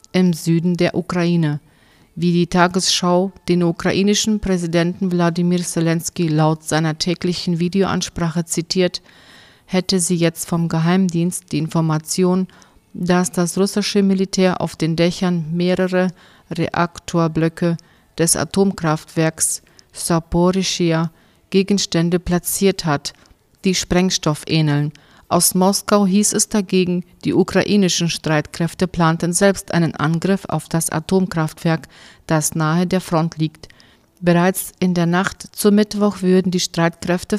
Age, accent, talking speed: 40-59, German, 115 wpm